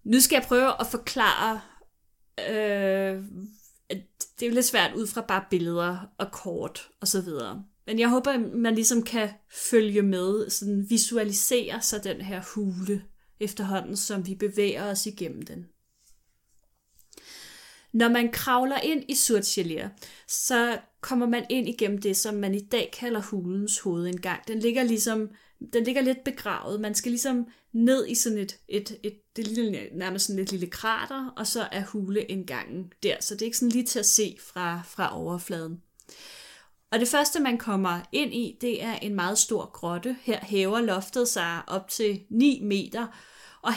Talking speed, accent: 170 wpm, native